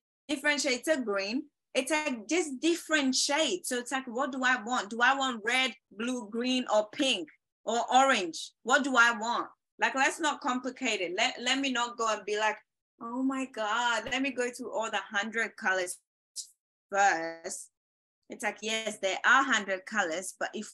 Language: English